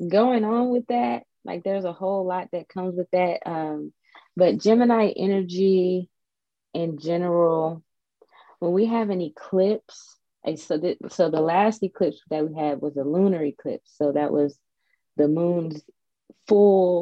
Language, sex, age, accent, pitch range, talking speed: English, female, 20-39, American, 145-185 Hz, 155 wpm